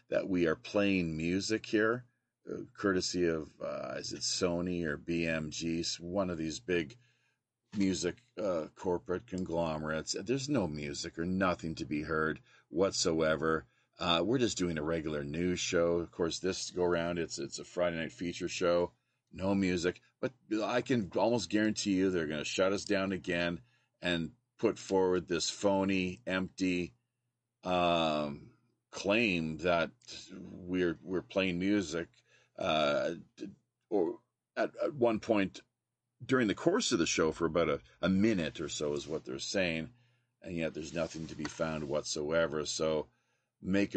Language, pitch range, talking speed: English, 85-105 Hz, 155 wpm